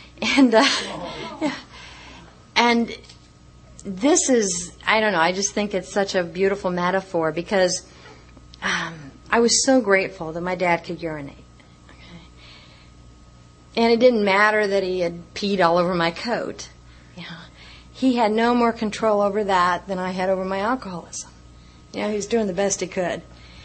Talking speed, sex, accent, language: 165 wpm, female, American, English